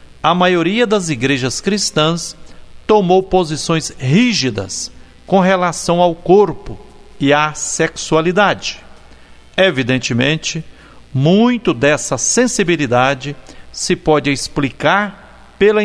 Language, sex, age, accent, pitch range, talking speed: Portuguese, male, 60-79, Brazilian, 150-195 Hz, 85 wpm